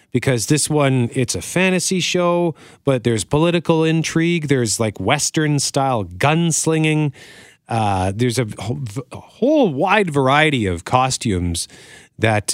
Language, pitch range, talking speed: English, 105-140 Hz, 115 wpm